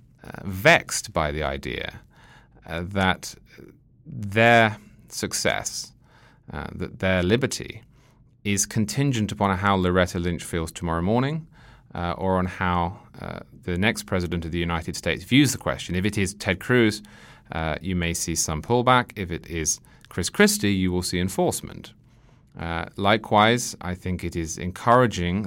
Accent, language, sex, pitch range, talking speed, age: British, English, male, 85-110 Hz, 150 wpm, 30-49